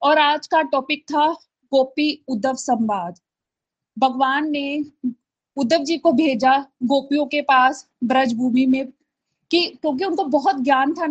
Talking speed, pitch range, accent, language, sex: 140 wpm, 265-330 Hz, native, Hindi, female